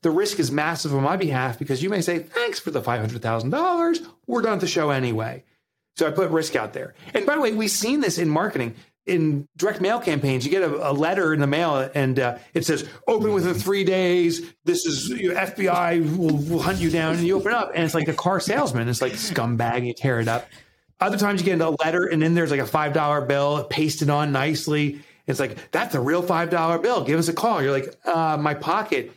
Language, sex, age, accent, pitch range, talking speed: English, male, 30-49, American, 140-185 Hz, 240 wpm